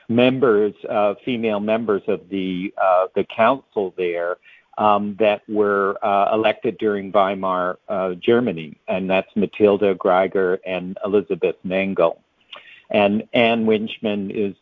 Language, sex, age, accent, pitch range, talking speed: English, male, 50-69, American, 95-110 Hz, 125 wpm